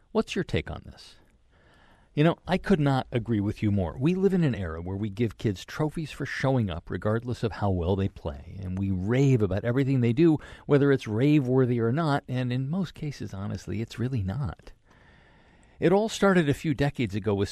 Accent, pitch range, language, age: American, 100-140 Hz, English, 50-69